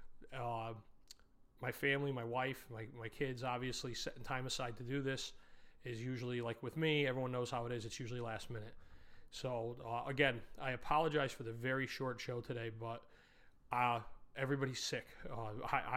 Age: 30-49